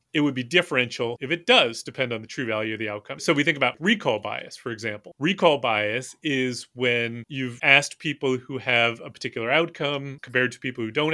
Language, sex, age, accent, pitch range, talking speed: English, male, 30-49, American, 120-155 Hz, 215 wpm